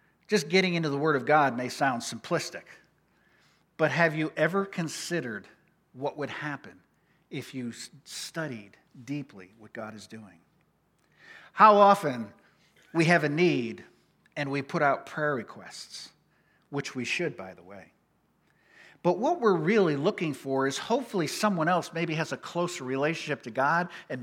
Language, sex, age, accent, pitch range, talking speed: English, male, 50-69, American, 140-185 Hz, 155 wpm